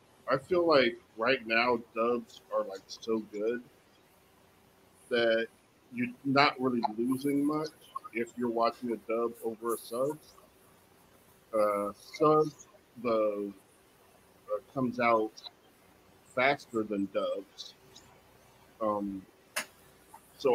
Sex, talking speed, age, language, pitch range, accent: male, 100 wpm, 50-69, English, 110-130 Hz, American